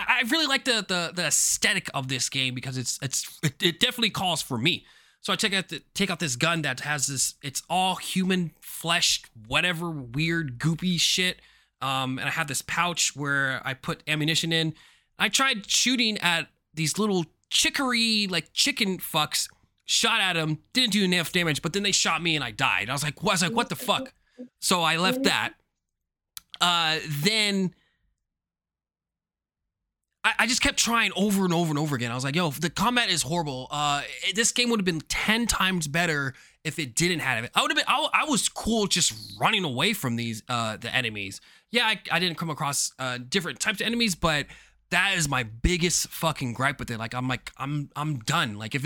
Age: 20-39